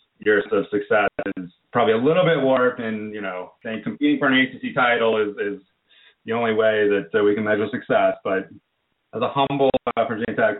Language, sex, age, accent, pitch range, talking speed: English, male, 30-49, American, 100-140 Hz, 200 wpm